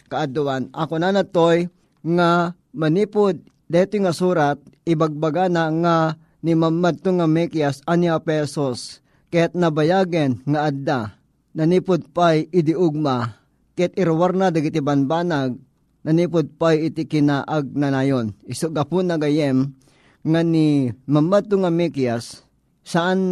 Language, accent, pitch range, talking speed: Filipino, native, 140-170 Hz, 115 wpm